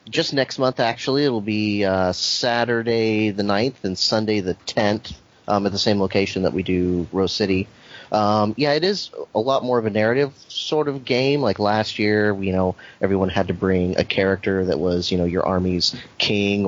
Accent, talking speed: American, 200 wpm